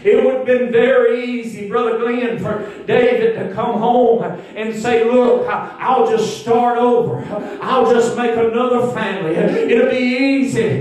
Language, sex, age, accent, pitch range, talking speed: English, male, 40-59, American, 235-265 Hz, 160 wpm